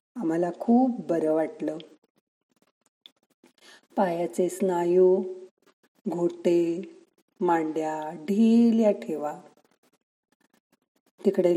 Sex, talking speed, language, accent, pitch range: female, 50 wpm, Marathi, native, 170-200 Hz